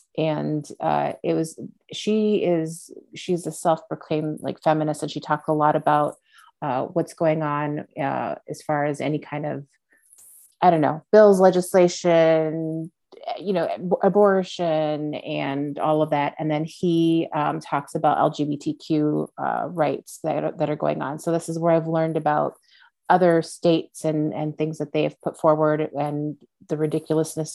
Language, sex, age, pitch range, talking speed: English, female, 30-49, 150-175 Hz, 170 wpm